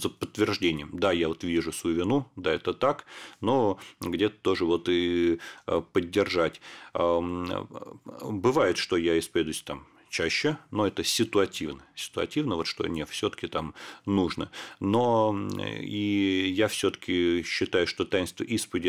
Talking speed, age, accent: 135 wpm, 40-59, native